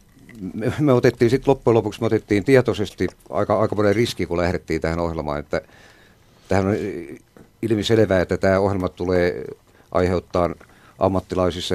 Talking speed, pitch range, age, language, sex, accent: 130 wpm, 90-110 Hz, 50-69, Finnish, male, native